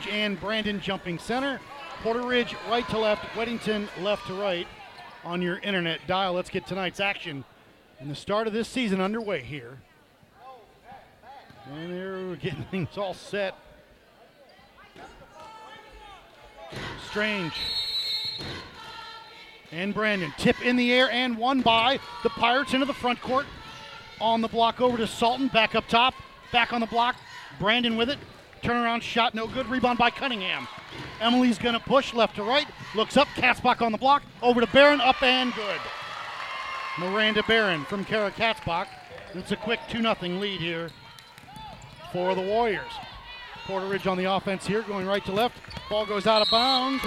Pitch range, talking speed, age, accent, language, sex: 190-245 Hz, 155 wpm, 50-69, American, English, male